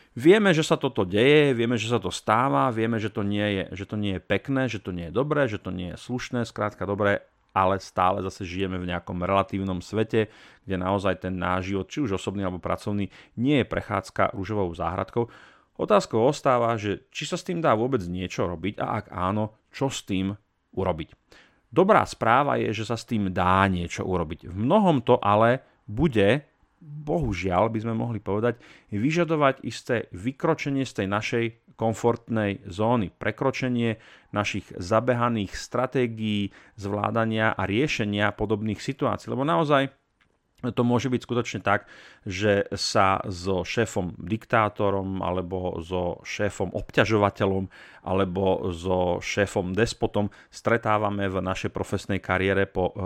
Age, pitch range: 40-59, 95-120 Hz